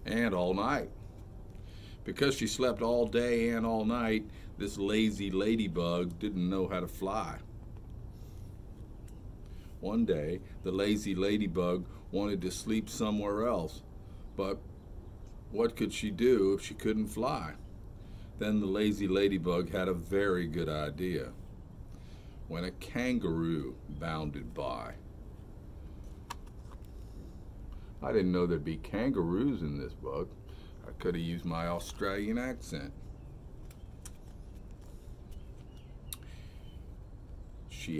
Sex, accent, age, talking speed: male, American, 50-69, 110 wpm